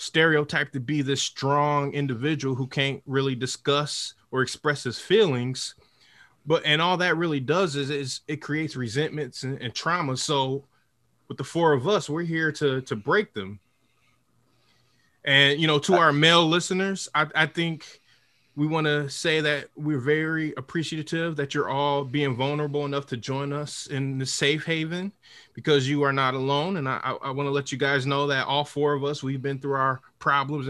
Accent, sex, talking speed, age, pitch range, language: American, male, 185 wpm, 20-39, 135-155 Hz, English